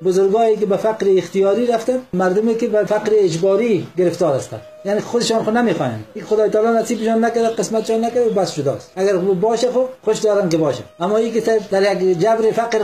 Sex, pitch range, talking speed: male, 170-225 Hz, 180 wpm